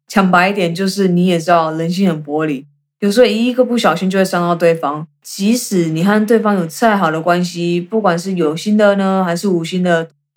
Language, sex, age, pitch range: Chinese, female, 20-39, 165-205 Hz